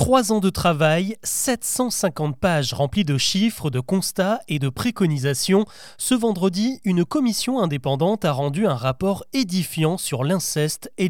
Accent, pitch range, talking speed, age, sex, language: French, 145-210 Hz, 145 wpm, 30-49, male, French